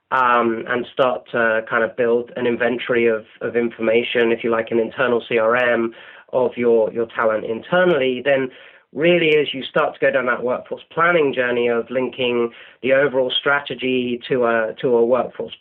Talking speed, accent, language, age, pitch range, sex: 175 wpm, British, English, 30-49, 115-140 Hz, male